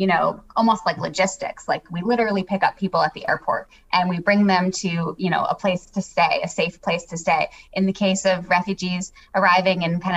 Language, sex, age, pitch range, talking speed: English, female, 20-39, 175-215 Hz, 225 wpm